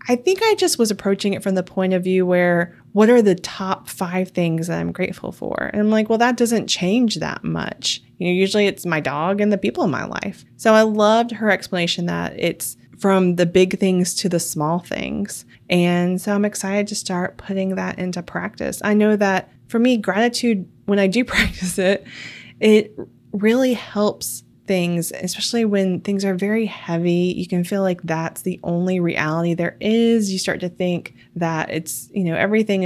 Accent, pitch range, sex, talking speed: American, 175-210 Hz, female, 200 wpm